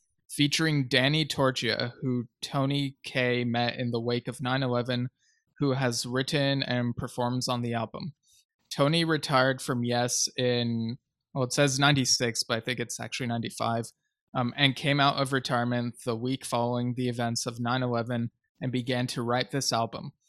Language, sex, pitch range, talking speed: English, male, 120-140 Hz, 165 wpm